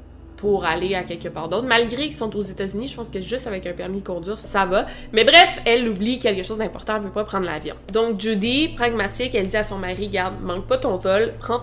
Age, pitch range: 20-39, 185-225 Hz